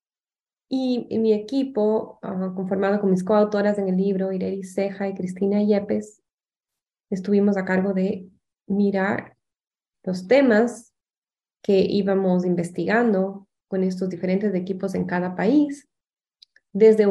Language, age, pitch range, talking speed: English, 20-39, 195-235 Hz, 115 wpm